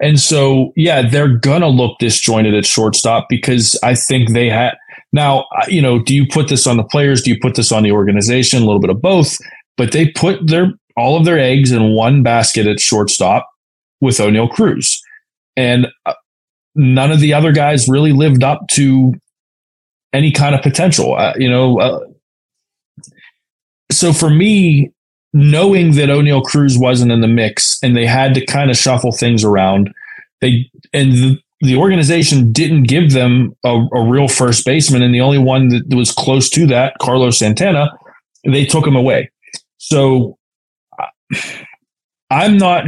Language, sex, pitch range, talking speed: English, male, 120-145 Hz, 170 wpm